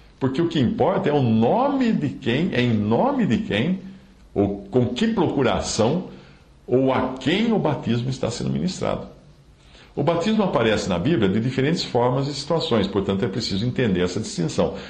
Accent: Brazilian